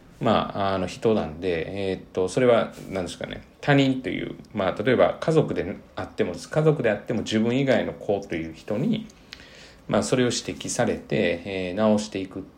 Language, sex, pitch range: Japanese, male, 85-120 Hz